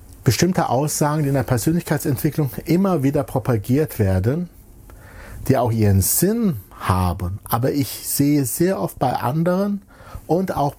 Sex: male